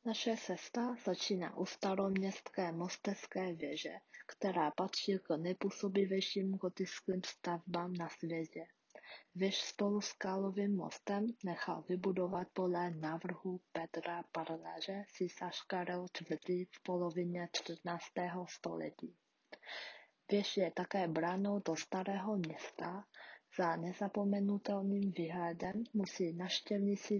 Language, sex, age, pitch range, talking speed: Czech, female, 20-39, 175-200 Hz, 95 wpm